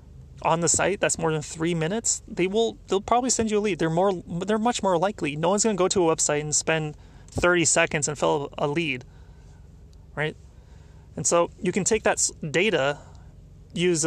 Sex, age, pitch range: male, 30-49, 135-175 Hz